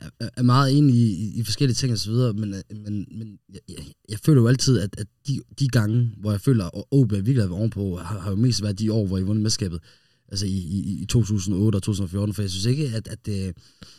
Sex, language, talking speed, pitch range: male, Danish, 260 wpm, 95-120 Hz